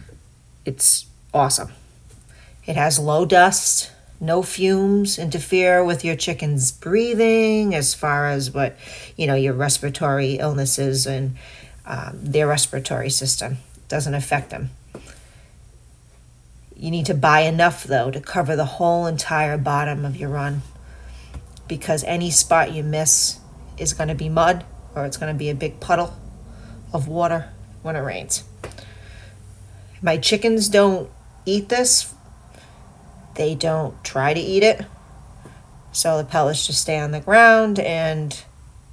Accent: American